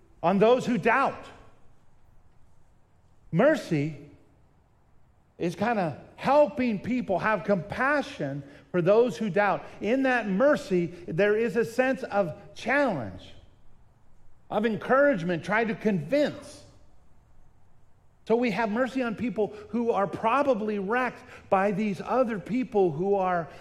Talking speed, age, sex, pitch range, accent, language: 115 wpm, 50-69, male, 160-235 Hz, American, English